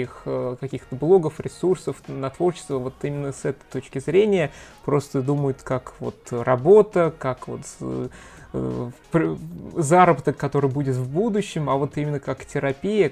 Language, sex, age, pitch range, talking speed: Russian, male, 20-39, 130-160 Hz, 130 wpm